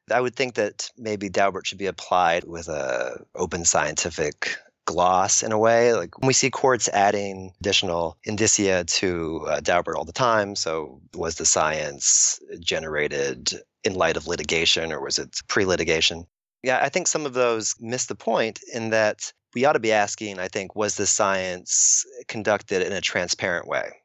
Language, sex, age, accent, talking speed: English, male, 30-49, American, 175 wpm